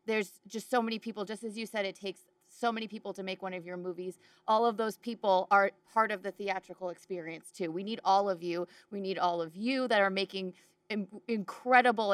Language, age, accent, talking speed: English, 30-49, American, 220 wpm